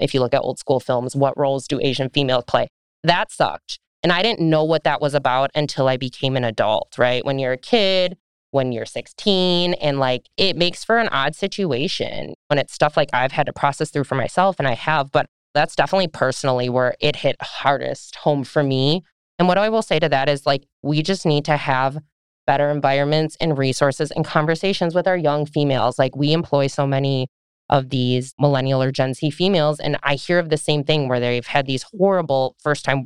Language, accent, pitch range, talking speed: English, American, 135-165 Hz, 215 wpm